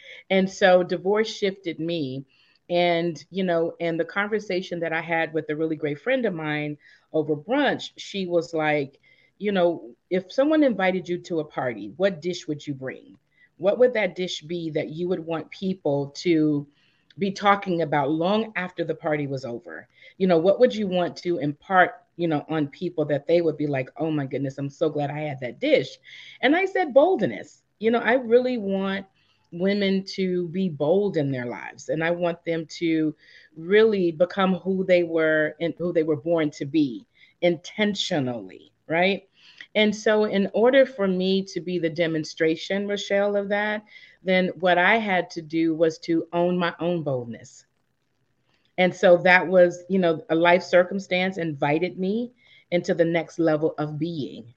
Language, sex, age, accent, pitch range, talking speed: English, female, 40-59, American, 155-195 Hz, 180 wpm